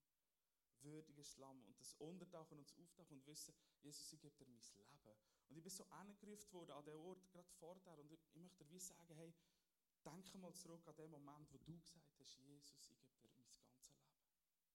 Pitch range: 135-175 Hz